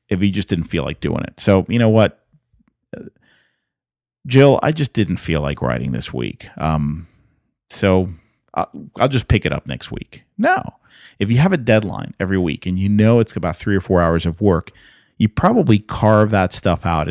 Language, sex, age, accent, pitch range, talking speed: English, male, 40-59, American, 85-115 Hz, 195 wpm